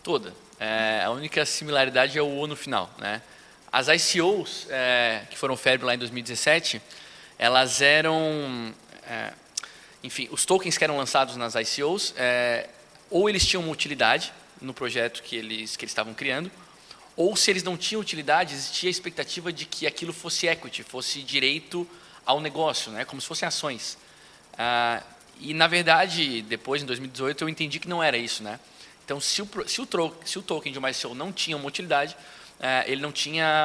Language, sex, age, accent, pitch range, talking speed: Portuguese, male, 20-39, Brazilian, 125-165 Hz, 175 wpm